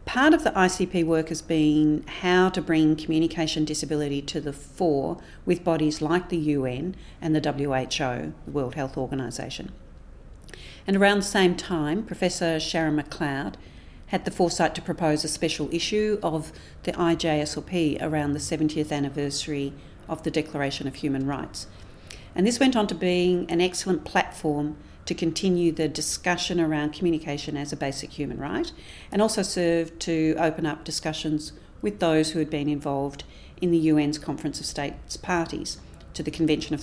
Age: 50-69